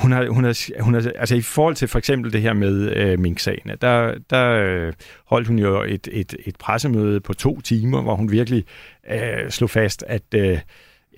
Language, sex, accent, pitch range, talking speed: Danish, male, native, 100-115 Hz, 210 wpm